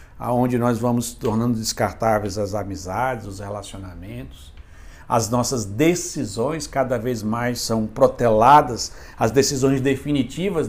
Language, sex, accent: Portuguese, male, Brazilian